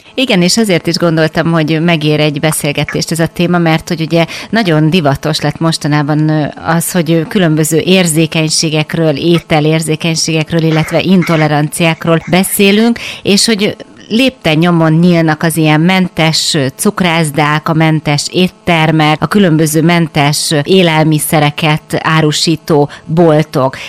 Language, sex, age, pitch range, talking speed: Hungarian, female, 30-49, 150-175 Hz, 115 wpm